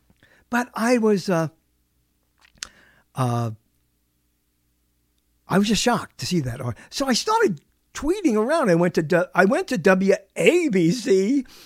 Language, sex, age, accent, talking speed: English, male, 50-69, American, 125 wpm